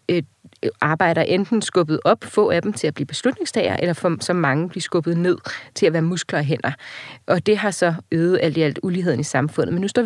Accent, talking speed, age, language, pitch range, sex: Danish, 220 wpm, 30-49, English, 160-195 Hz, female